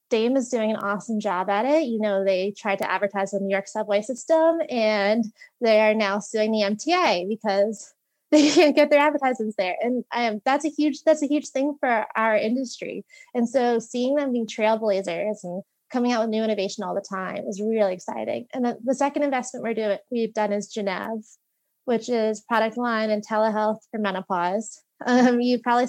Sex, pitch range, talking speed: female, 200-245 Hz, 195 wpm